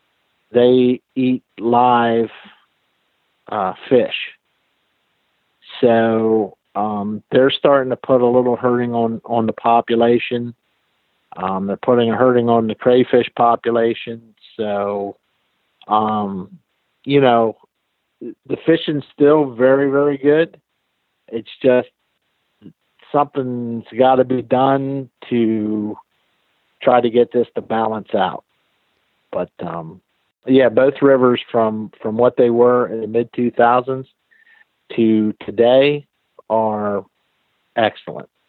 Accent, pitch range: American, 110-130 Hz